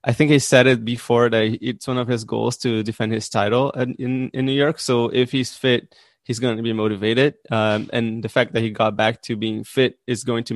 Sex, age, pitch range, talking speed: male, 20-39, 115-130 Hz, 250 wpm